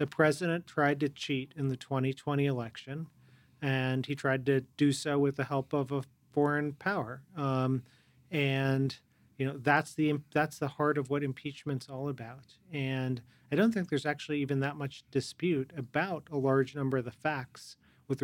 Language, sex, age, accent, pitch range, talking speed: English, male, 40-59, American, 130-145 Hz, 180 wpm